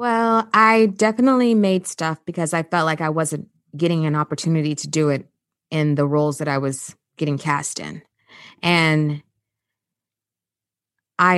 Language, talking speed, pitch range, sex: English, 150 wpm, 155-205 Hz, female